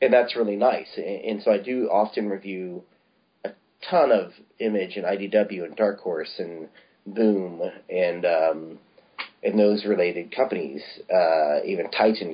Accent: American